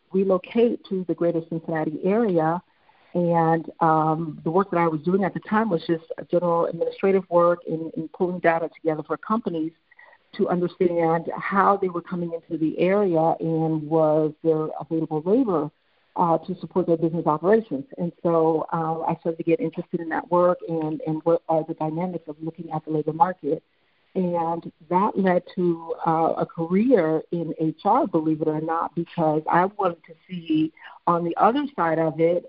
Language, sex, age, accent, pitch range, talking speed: English, female, 50-69, American, 160-180 Hz, 175 wpm